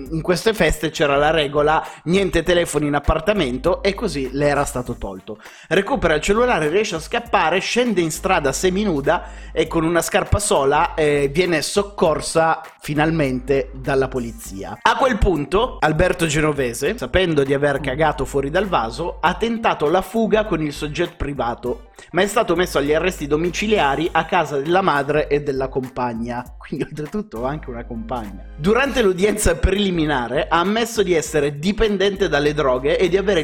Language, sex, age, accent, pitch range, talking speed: Italian, male, 30-49, native, 130-175 Hz, 160 wpm